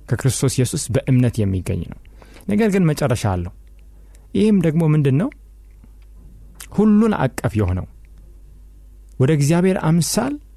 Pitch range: 85-135 Hz